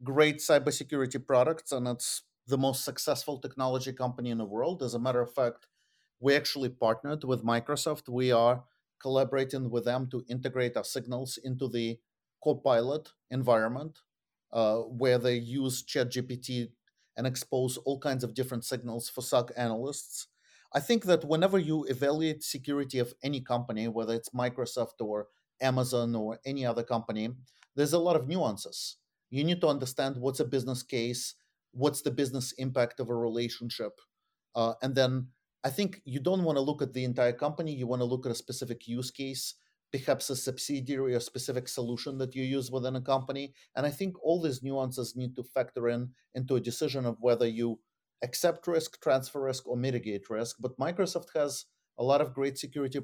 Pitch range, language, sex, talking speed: 120-140 Hz, English, male, 175 wpm